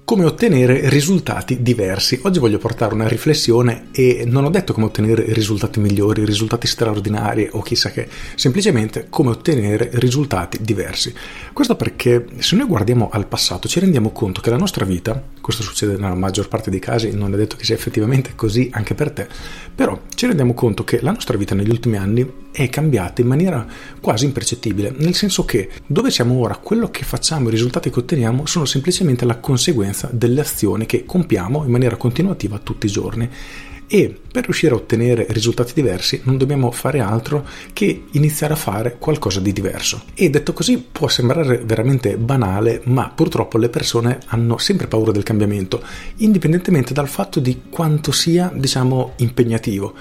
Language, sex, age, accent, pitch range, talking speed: Italian, male, 40-59, native, 110-140 Hz, 175 wpm